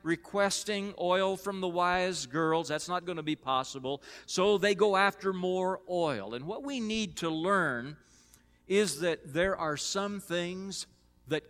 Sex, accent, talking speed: male, American, 160 wpm